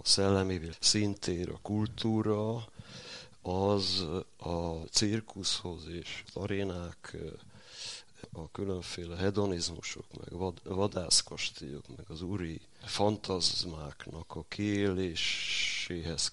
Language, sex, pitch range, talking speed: Hungarian, male, 80-100 Hz, 80 wpm